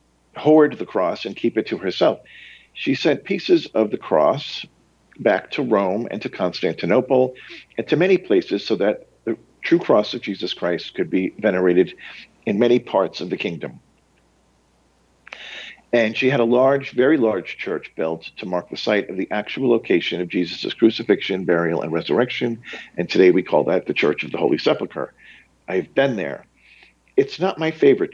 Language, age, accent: English, 50-69, American